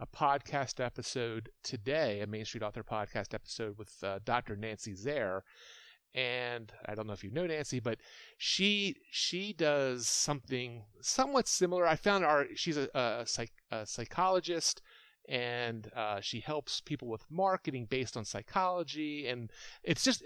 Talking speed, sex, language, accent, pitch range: 155 wpm, male, English, American, 110-155 Hz